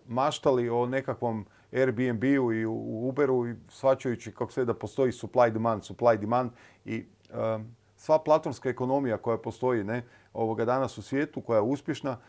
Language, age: Croatian, 40-59